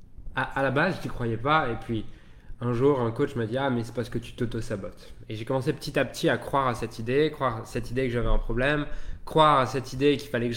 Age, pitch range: 20-39, 110-145 Hz